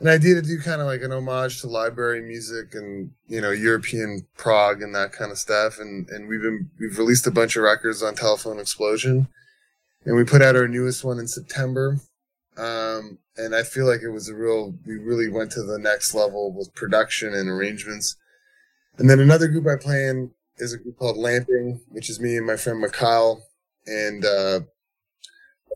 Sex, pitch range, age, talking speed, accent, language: male, 110-135 Hz, 10-29, 200 wpm, American, English